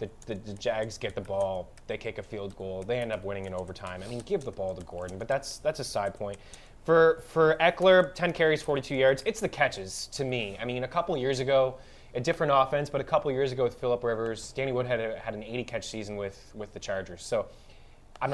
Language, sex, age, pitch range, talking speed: English, male, 20-39, 110-150 Hz, 235 wpm